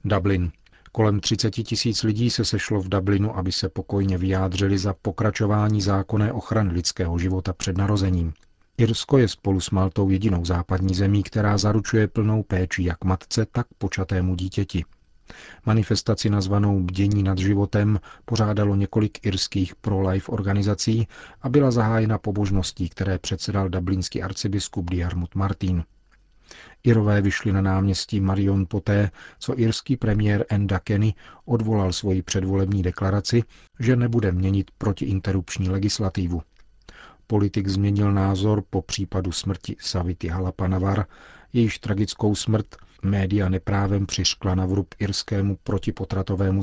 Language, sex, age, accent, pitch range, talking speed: Czech, male, 40-59, native, 95-105 Hz, 120 wpm